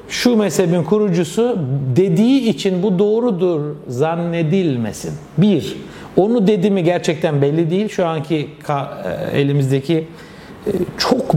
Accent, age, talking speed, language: native, 60-79, 95 wpm, Turkish